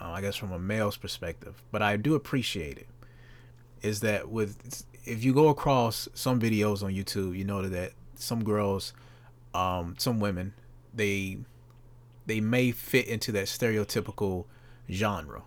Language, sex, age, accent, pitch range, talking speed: English, male, 30-49, American, 100-120 Hz, 145 wpm